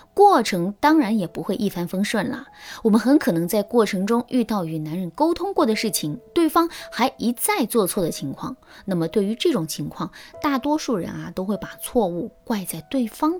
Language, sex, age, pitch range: Chinese, female, 20-39, 195-300 Hz